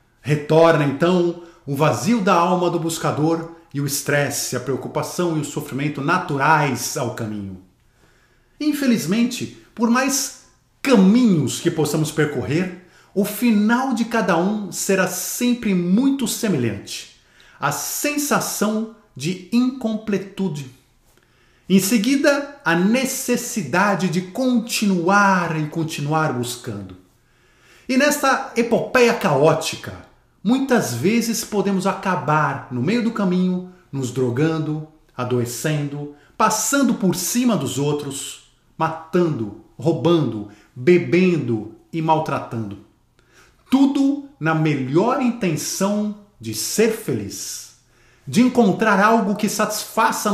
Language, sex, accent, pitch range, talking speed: Portuguese, male, Brazilian, 140-220 Hz, 100 wpm